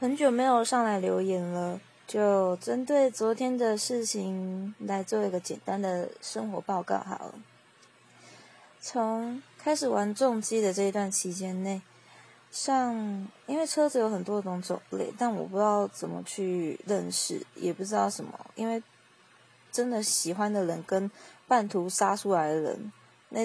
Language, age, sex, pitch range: Chinese, 20-39, female, 185-230 Hz